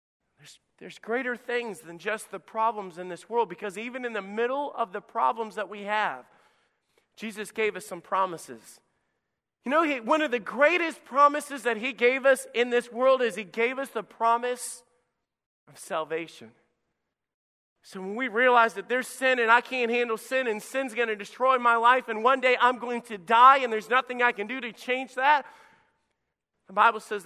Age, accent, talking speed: 40-59, American, 185 wpm